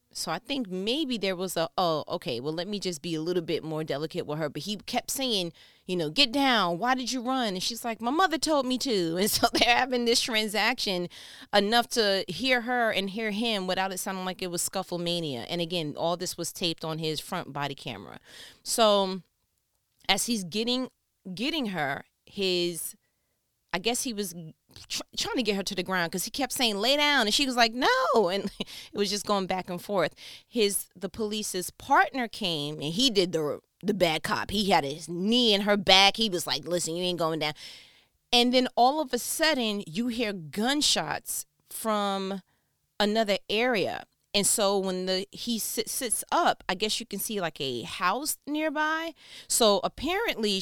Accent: American